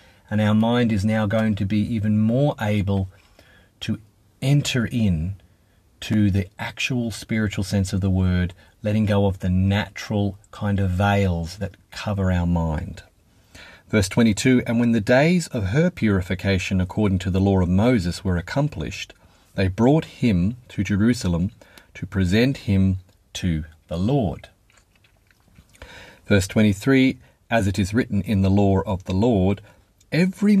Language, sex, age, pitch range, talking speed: English, male, 40-59, 95-115 Hz, 145 wpm